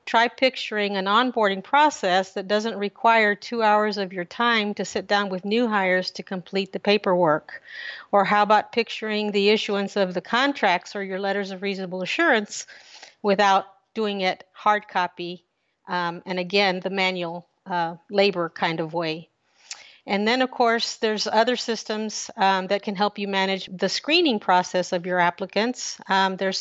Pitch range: 190-215 Hz